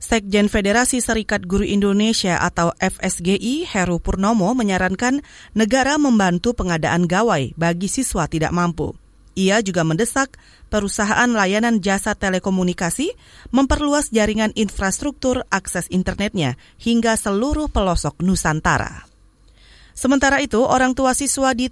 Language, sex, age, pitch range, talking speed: Indonesian, female, 30-49, 185-245 Hz, 110 wpm